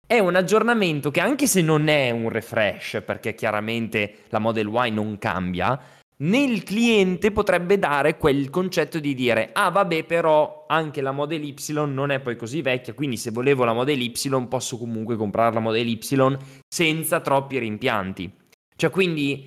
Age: 20-39